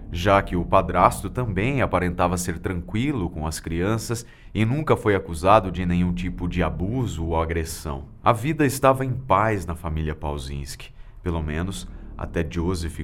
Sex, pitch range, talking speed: male, 85-110 Hz, 155 wpm